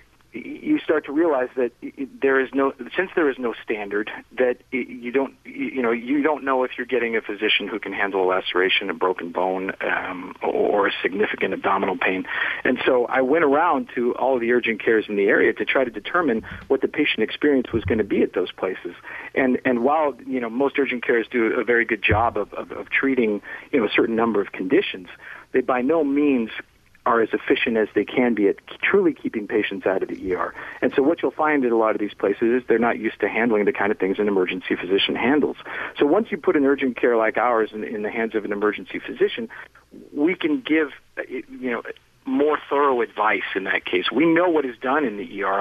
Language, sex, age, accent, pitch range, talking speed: English, male, 50-69, American, 115-155 Hz, 230 wpm